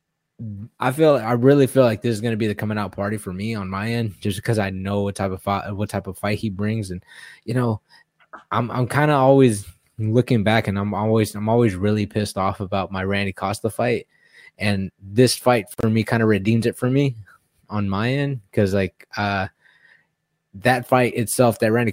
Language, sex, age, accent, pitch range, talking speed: English, male, 20-39, American, 95-115 Hz, 215 wpm